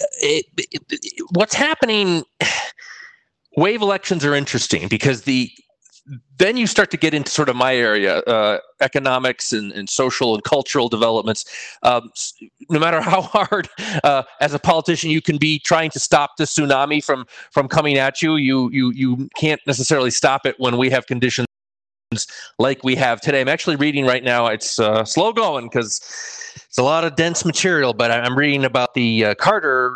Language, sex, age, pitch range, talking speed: English, male, 30-49, 120-155 Hz, 180 wpm